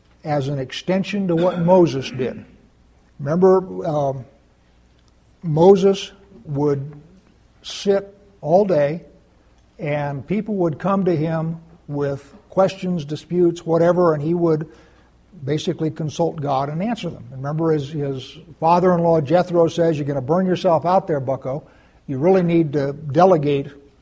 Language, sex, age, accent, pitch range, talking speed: English, male, 60-79, American, 140-175 Hz, 130 wpm